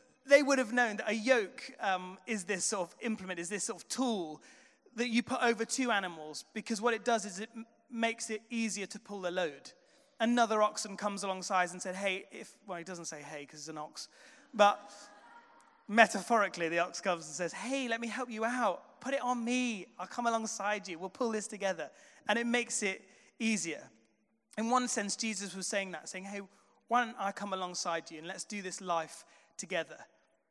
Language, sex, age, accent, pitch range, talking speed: English, male, 30-49, British, 190-230 Hz, 205 wpm